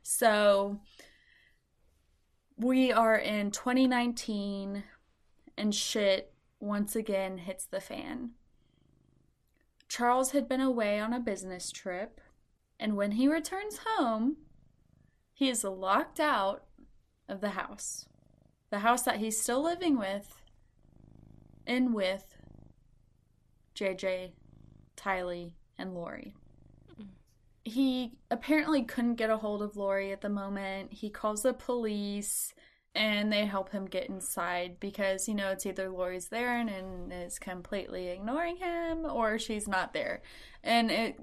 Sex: female